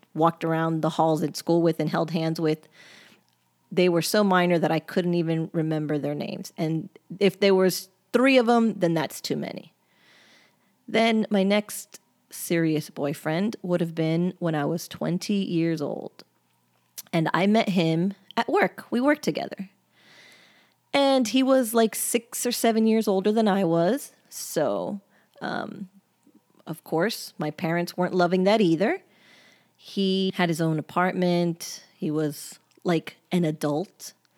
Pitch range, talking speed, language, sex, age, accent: 165-200 Hz, 155 wpm, English, female, 30-49, American